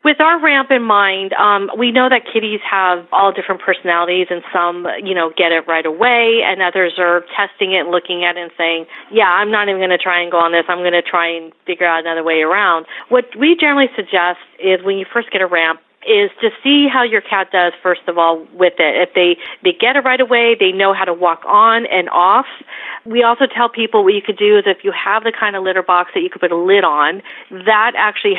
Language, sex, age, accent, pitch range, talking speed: English, female, 40-59, American, 180-235 Hz, 250 wpm